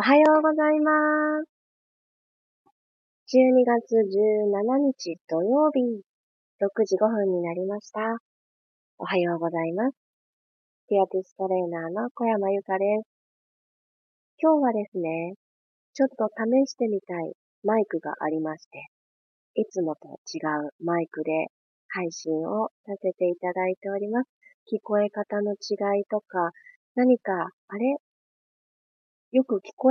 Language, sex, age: Japanese, female, 30-49